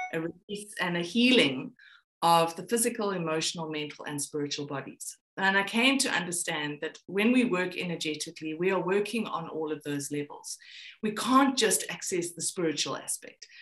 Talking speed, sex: 170 wpm, female